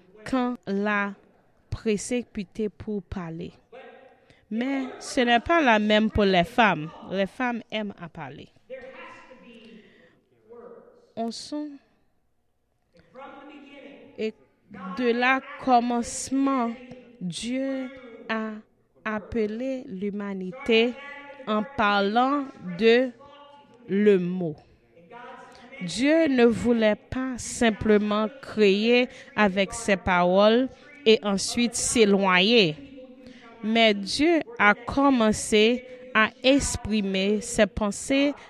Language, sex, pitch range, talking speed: French, female, 205-265 Hz, 85 wpm